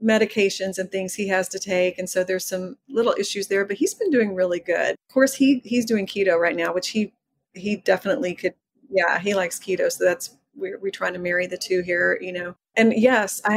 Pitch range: 185-230 Hz